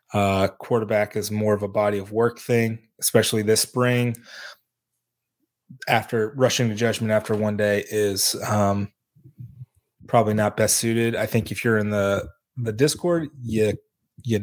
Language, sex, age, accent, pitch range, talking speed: English, male, 20-39, American, 105-120 Hz, 150 wpm